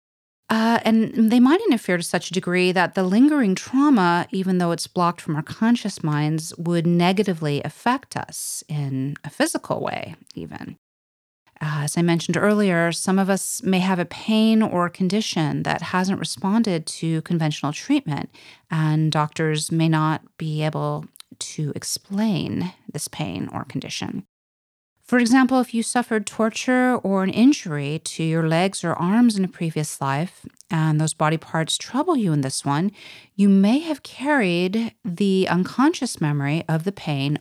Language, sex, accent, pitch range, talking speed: English, female, American, 155-215 Hz, 160 wpm